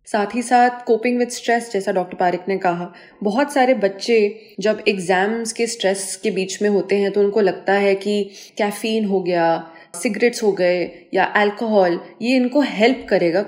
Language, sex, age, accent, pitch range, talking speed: Hindi, female, 20-39, native, 195-235 Hz, 180 wpm